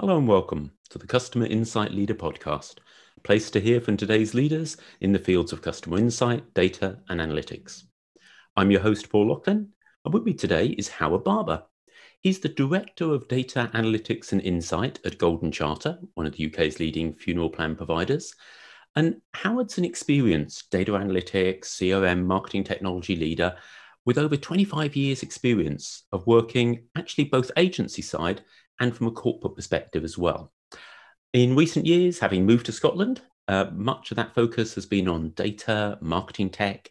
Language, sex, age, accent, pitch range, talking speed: English, male, 40-59, British, 95-130 Hz, 165 wpm